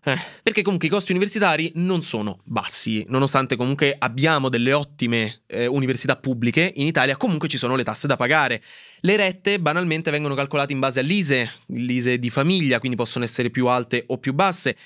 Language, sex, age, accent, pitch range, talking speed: Italian, male, 20-39, native, 125-165 Hz, 180 wpm